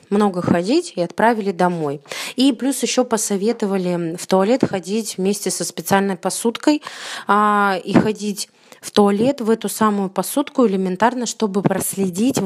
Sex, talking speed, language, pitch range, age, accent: female, 135 wpm, Russian, 185-235 Hz, 20-39, native